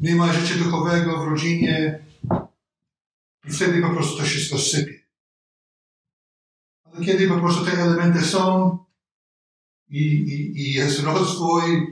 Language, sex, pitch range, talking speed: Polish, male, 135-170 Hz, 120 wpm